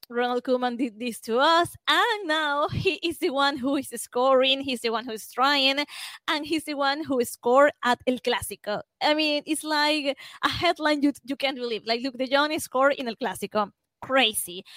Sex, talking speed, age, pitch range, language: female, 200 wpm, 20-39, 215-285 Hz, English